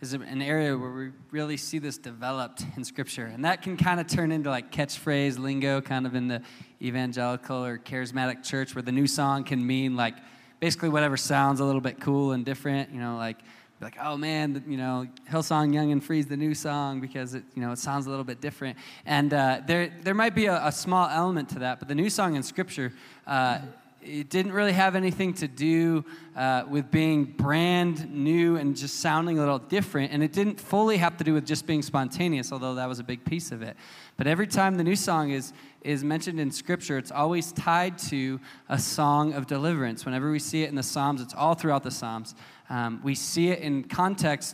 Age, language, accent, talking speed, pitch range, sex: 20-39, English, American, 220 wpm, 130-165 Hz, male